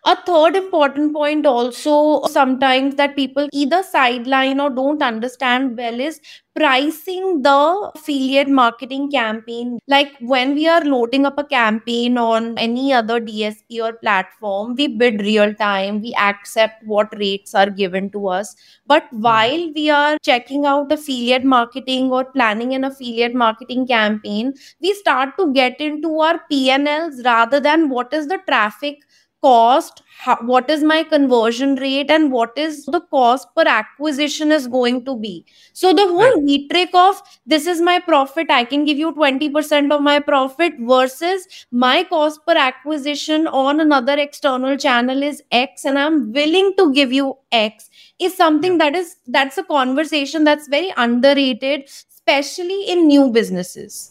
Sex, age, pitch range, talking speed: female, 20-39, 245-305 Hz, 155 wpm